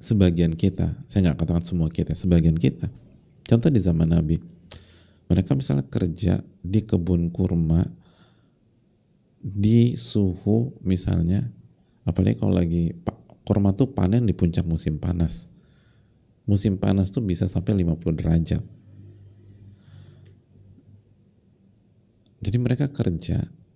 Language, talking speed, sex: Indonesian, 105 wpm, male